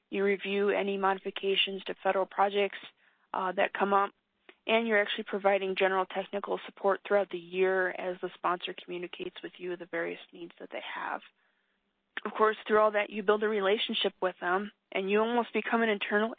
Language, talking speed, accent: English, 185 wpm, American